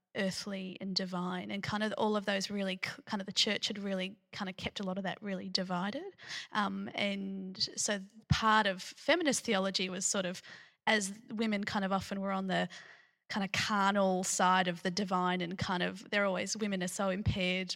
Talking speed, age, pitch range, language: 200 wpm, 20-39, 190-215 Hz, English